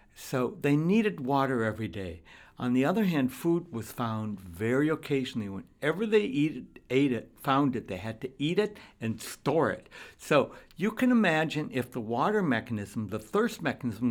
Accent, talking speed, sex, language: American, 175 wpm, male, English